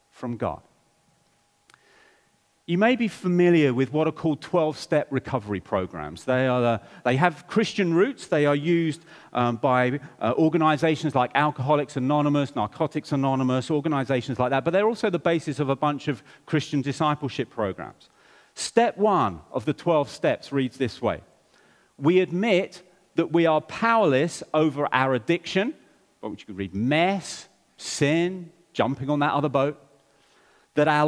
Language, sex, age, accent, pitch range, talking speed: English, male, 40-59, British, 125-165 Hz, 150 wpm